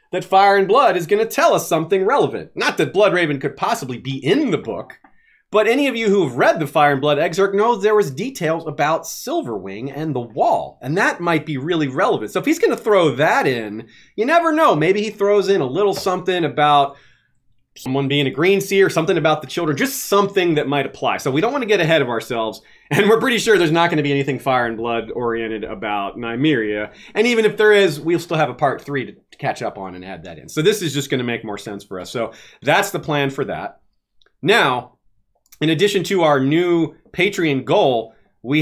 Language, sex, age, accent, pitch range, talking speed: English, male, 30-49, American, 135-195 Hz, 235 wpm